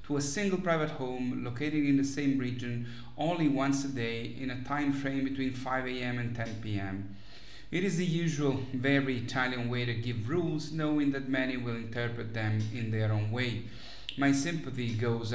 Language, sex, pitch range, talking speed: English, male, 120-140 Hz, 185 wpm